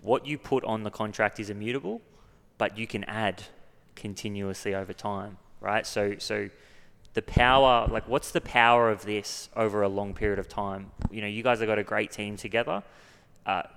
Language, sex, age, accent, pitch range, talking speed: English, male, 20-39, Australian, 105-115 Hz, 190 wpm